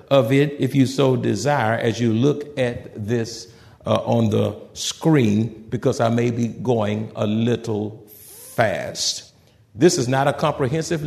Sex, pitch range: male, 110-145 Hz